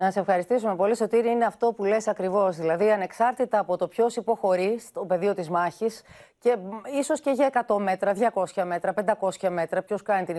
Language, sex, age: Greek, female, 30-49